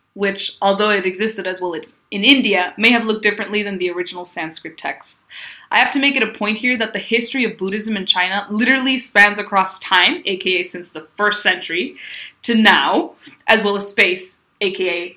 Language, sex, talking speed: English, female, 190 wpm